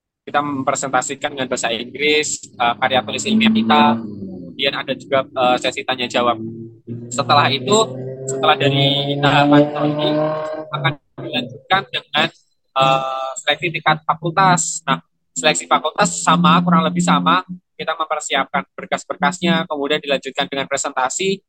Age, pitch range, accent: 20-39, 125-155 Hz, native